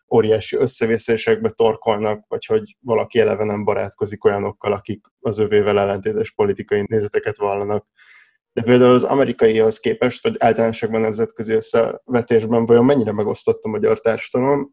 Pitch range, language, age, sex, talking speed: 110-140 Hz, Hungarian, 20-39, male, 130 wpm